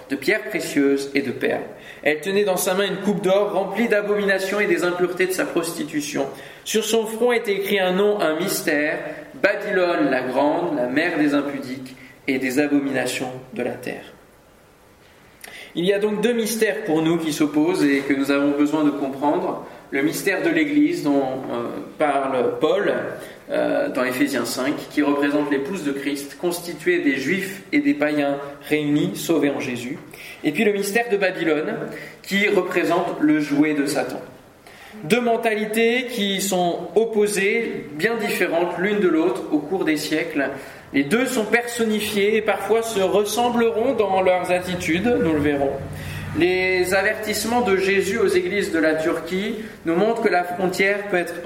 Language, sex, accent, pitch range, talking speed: French, male, French, 150-215 Hz, 165 wpm